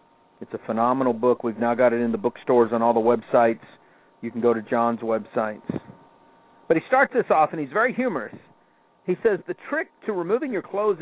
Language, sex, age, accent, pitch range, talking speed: English, male, 50-69, American, 125-200 Hz, 205 wpm